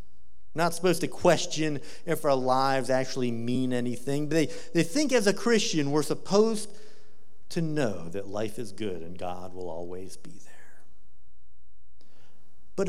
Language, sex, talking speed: English, male, 145 wpm